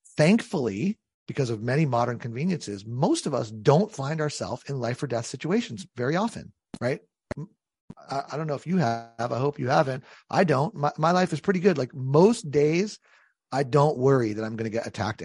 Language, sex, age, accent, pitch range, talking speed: English, male, 40-59, American, 125-175 Hz, 195 wpm